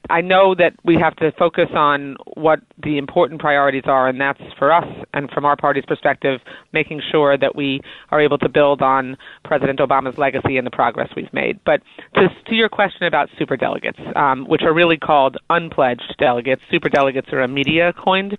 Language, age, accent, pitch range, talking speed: English, 30-49, American, 140-170 Hz, 190 wpm